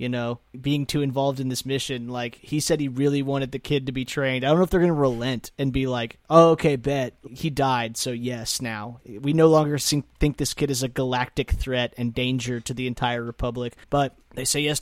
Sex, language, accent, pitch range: male, English, American, 120-140 Hz